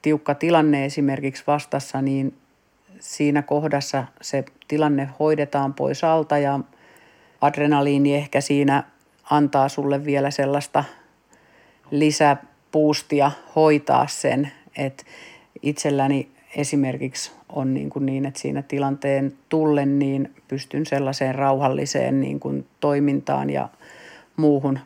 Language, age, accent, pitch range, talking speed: Finnish, 50-69, native, 135-145 Hz, 100 wpm